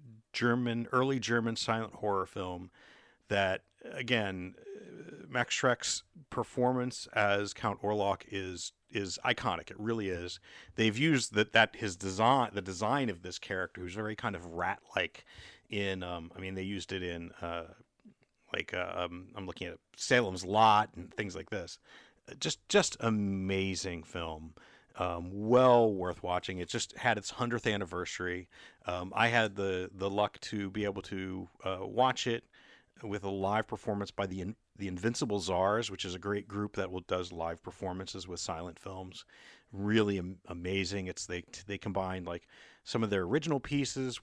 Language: English